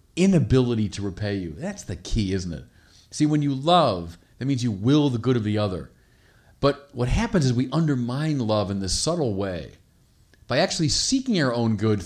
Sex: male